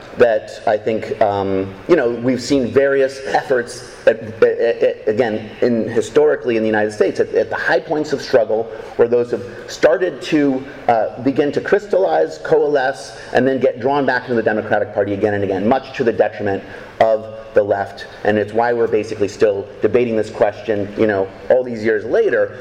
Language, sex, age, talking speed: English, male, 30-49, 180 wpm